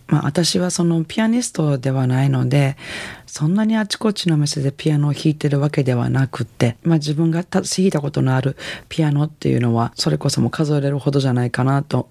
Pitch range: 130-170 Hz